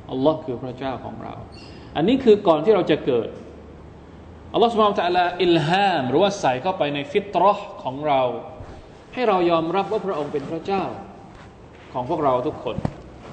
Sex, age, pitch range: male, 20-39, 125-185 Hz